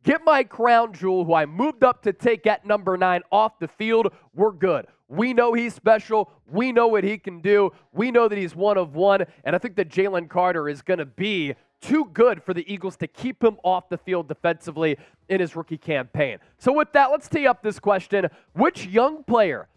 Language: English